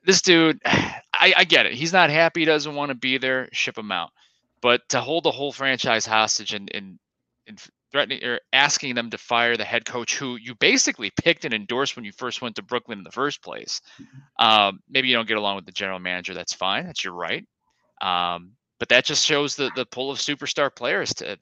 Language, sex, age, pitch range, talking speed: English, male, 30-49, 100-145 Hz, 220 wpm